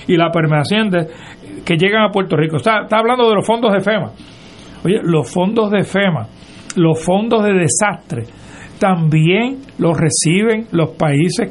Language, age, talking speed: Spanish, 60-79, 155 wpm